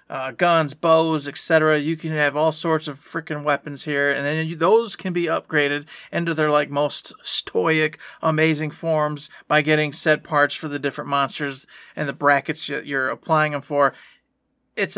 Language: English